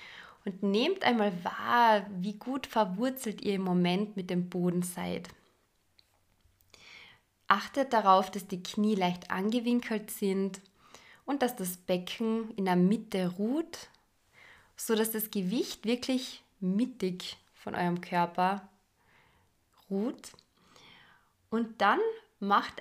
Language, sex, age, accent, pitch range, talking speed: German, female, 20-39, German, 180-225 Hz, 110 wpm